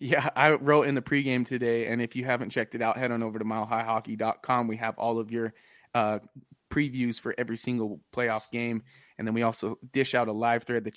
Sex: male